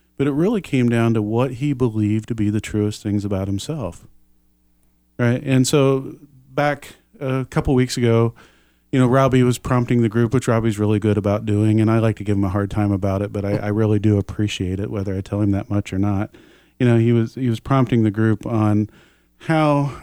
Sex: male